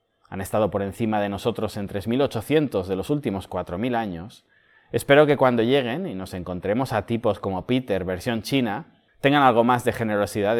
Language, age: Spanish, 30-49